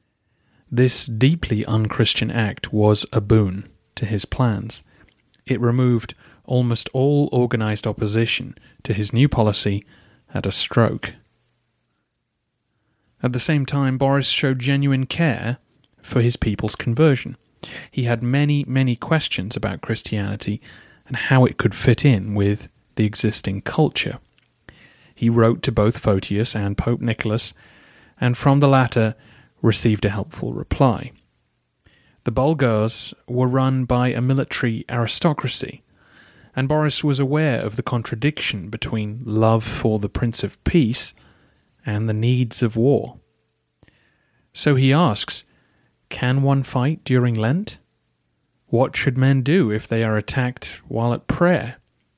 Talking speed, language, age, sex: 130 wpm, English, 30-49, male